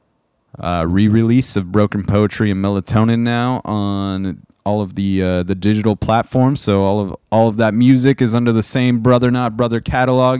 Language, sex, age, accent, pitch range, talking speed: English, male, 30-49, American, 95-115 Hz, 180 wpm